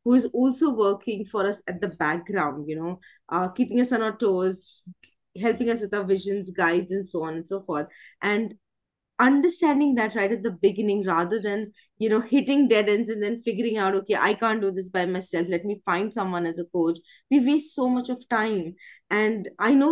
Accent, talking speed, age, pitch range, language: Indian, 210 wpm, 20-39, 180-220 Hz, English